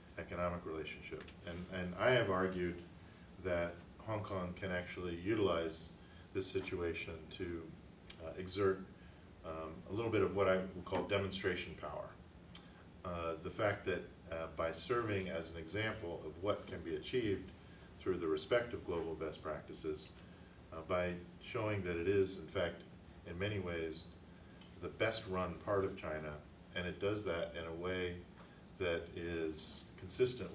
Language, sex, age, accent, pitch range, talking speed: English, male, 40-59, American, 85-95 Hz, 155 wpm